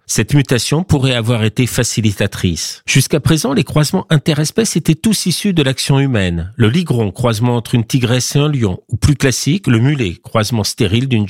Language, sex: French, male